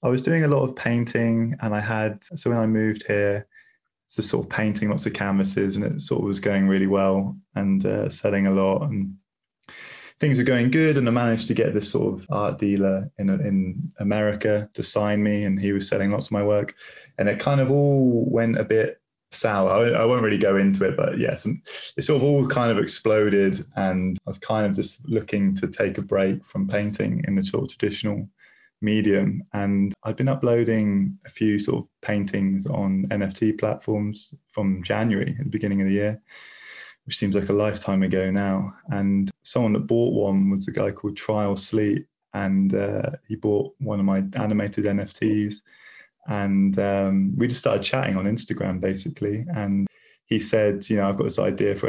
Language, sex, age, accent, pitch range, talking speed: English, male, 20-39, British, 100-120 Hz, 200 wpm